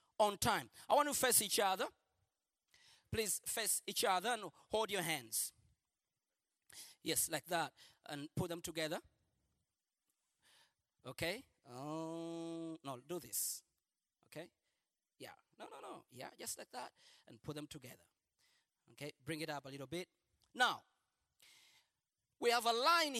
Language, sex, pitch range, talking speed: Swedish, male, 165-280 Hz, 140 wpm